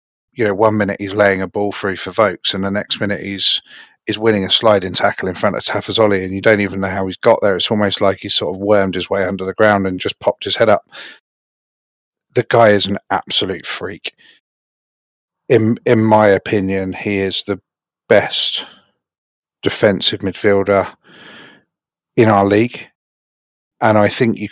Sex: male